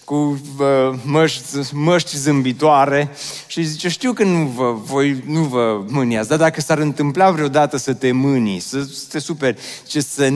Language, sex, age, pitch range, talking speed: Romanian, male, 30-49, 130-190 Hz, 160 wpm